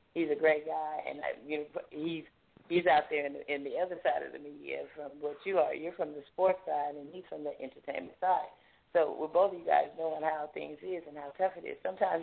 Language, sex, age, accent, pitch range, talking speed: English, female, 30-49, American, 150-180 Hz, 255 wpm